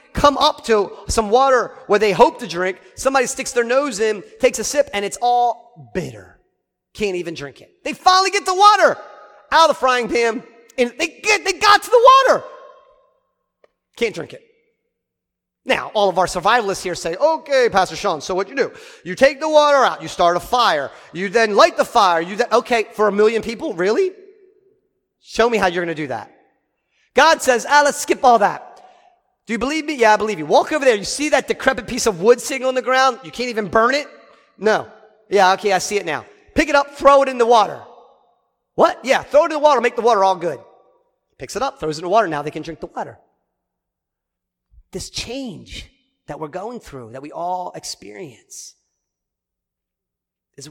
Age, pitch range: 40-59, 190-285 Hz